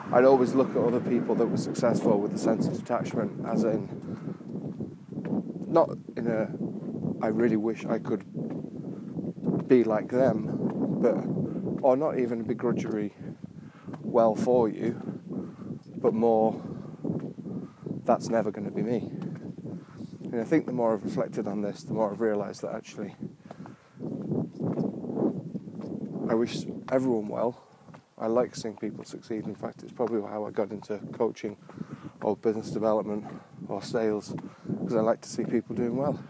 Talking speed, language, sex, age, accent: 145 wpm, English, male, 20-39, British